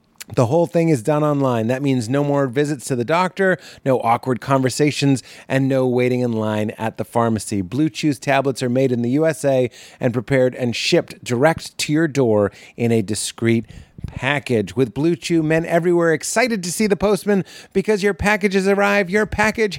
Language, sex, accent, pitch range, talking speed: English, male, American, 135-190 Hz, 185 wpm